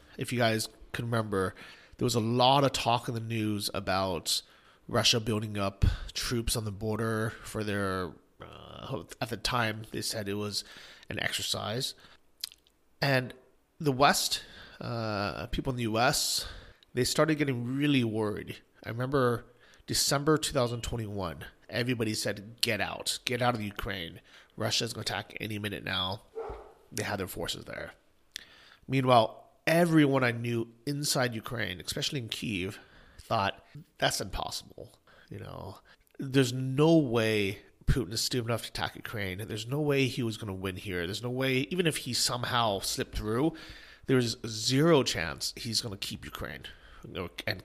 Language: English